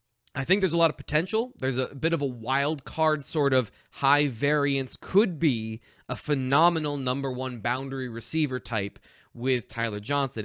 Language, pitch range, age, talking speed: English, 115-145 Hz, 20-39, 170 wpm